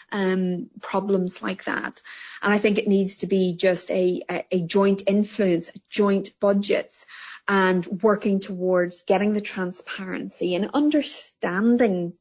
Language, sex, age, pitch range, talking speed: English, female, 30-49, 180-210 Hz, 135 wpm